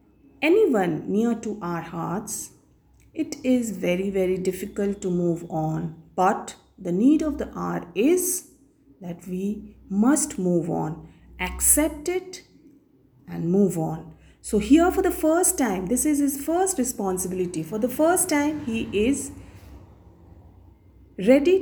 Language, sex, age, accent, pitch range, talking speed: English, female, 50-69, Indian, 155-255 Hz, 135 wpm